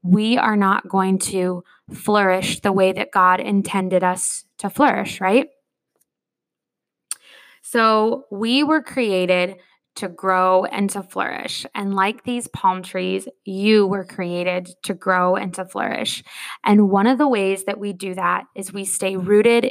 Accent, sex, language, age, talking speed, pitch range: American, female, English, 20-39, 150 wpm, 190-225 Hz